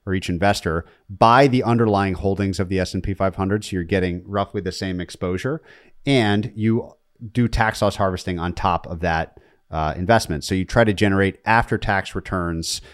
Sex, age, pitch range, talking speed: male, 30-49, 90-110 Hz, 170 wpm